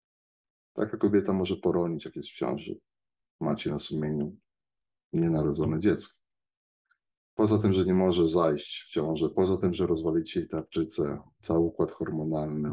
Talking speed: 140 wpm